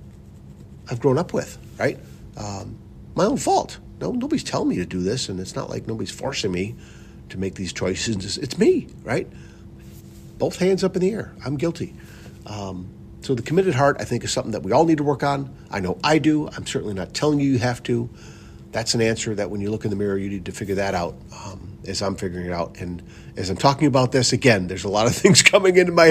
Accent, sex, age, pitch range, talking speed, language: American, male, 50-69, 100-135 Hz, 235 wpm, English